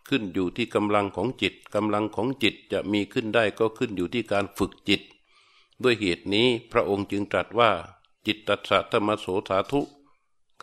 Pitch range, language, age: 100-120 Hz, Thai, 60-79